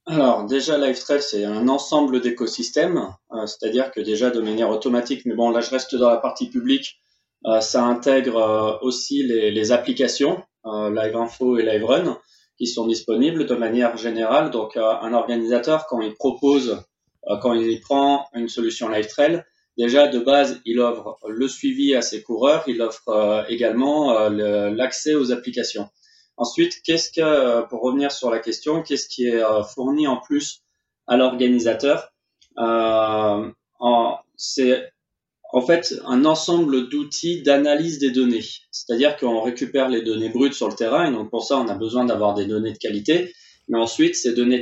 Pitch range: 115-140 Hz